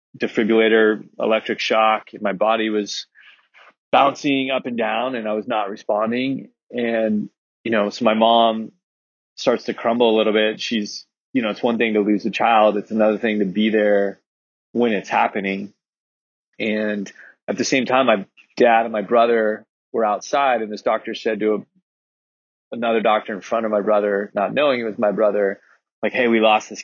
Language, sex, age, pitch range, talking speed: English, male, 20-39, 105-115 Hz, 180 wpm